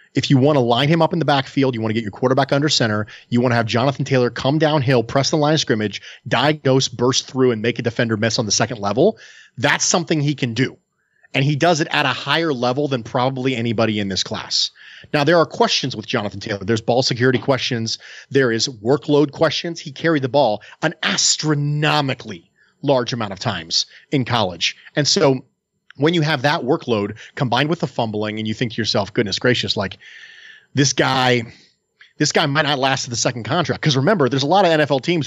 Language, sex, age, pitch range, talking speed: English, male, 30-49, 120-155 Hz, 215 wpm